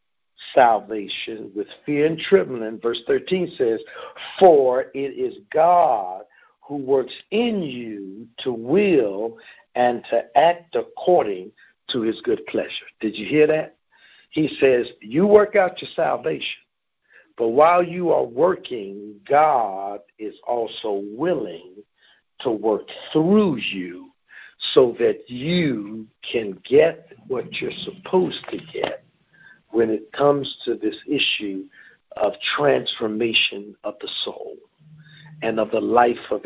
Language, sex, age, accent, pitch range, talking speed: English, male, 60-79, American, 115-165 Hz, 125 wpm